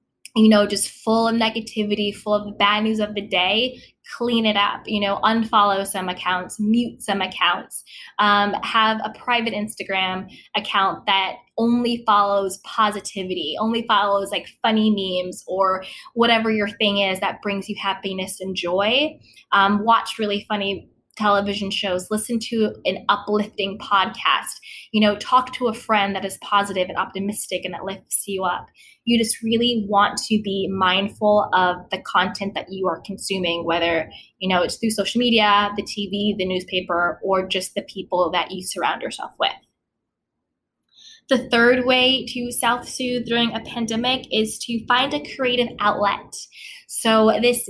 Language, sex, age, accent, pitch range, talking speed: English, female, 20-39, American, 195-225 Hz, 160 wpm